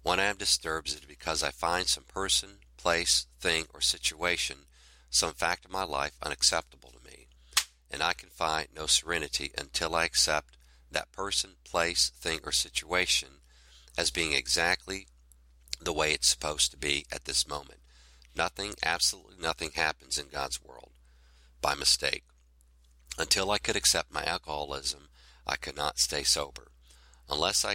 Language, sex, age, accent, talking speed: English, male, 50-69, American, 155 wpm